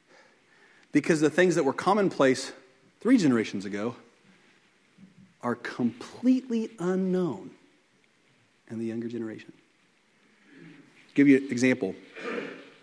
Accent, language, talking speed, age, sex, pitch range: American, English, 100 wpm, 40-59, male, 110-150 Hz